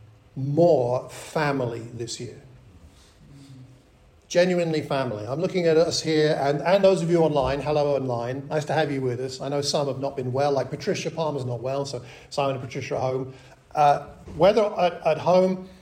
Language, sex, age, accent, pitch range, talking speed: English, male, 50-69, British, 130-165 Hz, 180 wpm